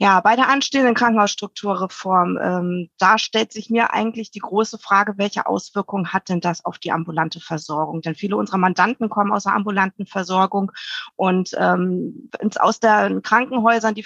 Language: German